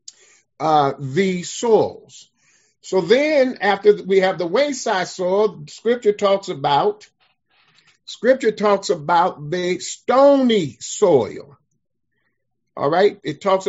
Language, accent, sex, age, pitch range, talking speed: English, American, male, 50-69, 170-255 Hz, 105 wpm